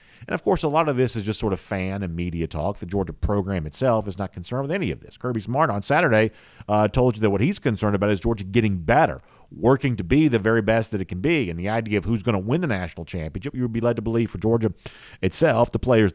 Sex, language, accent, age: male, English, American, 50-69